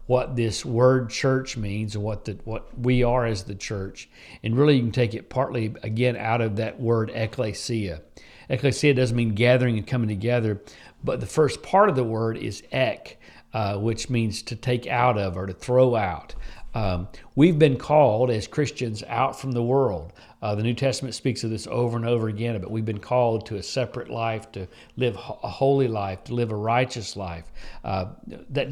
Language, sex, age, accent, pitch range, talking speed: English, male, 50-69, American, 110-130 Hz, 195 wpm